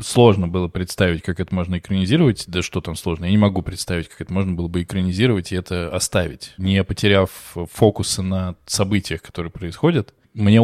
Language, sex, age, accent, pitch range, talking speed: Russian, male, 20-39, native, 90-115 Hz, 180 wpm